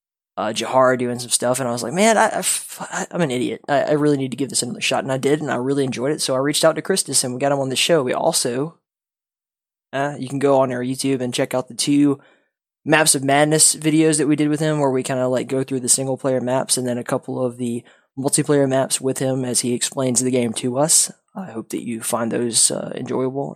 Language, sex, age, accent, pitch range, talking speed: English, male, 20-39, American, 125-145 Hz, 255 wpm